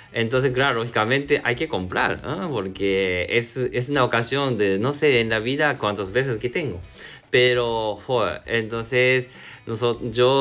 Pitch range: 100-140 Hz